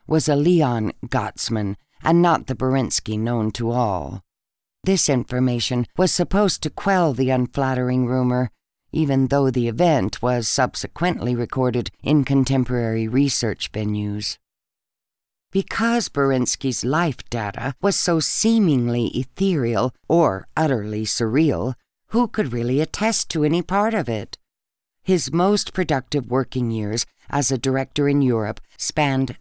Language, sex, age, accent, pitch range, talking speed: English, female, 60-79, American, 120-155 Hz, 125 wpm